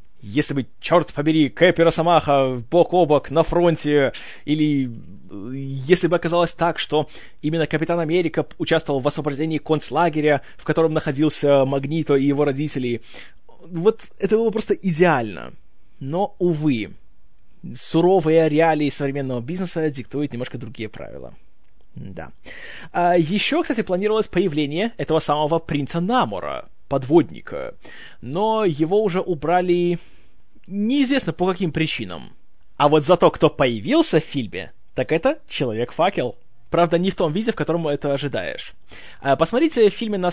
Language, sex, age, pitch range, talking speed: Russian, male, 20-39, 140-180 Hz, 130 wpm